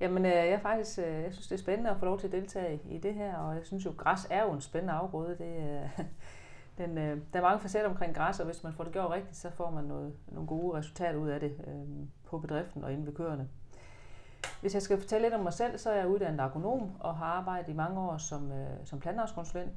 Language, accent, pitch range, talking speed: Danish, native, 145-195 Hz, 235 wpm